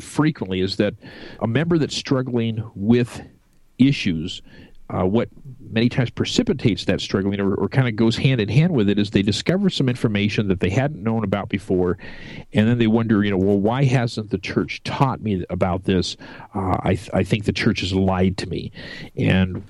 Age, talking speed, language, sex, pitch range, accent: 50-69, 190 wpm, English, male, 95-120 Hz, American